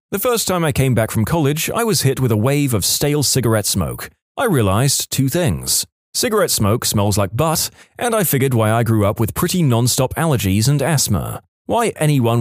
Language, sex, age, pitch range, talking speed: English, male, 30-49, 105-145 Hz, 205 wpm